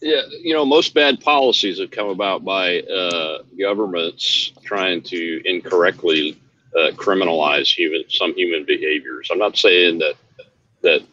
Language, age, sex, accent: English, 50-69, male, American